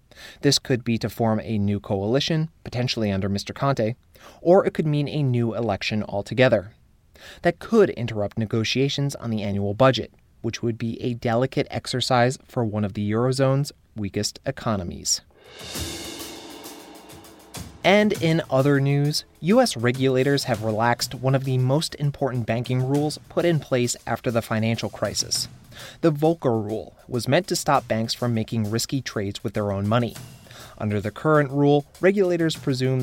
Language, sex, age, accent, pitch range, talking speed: English, male, 30-49, American, 110-140 Hz, 155 wpm